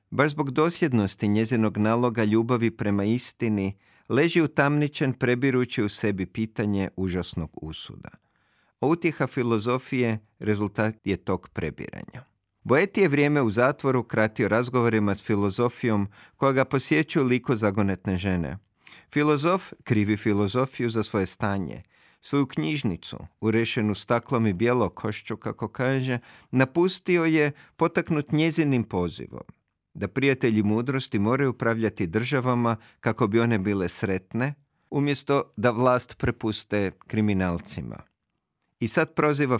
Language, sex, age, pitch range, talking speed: Croatian, male, 50-69, 105-135 Hz, 115 wpm